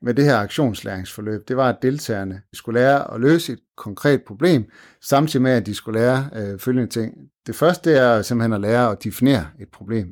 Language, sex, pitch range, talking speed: Danish, male, 105-135 Hz, 200 wpm